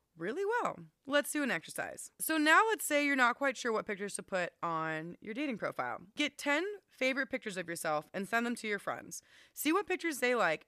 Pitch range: 215-295 Hz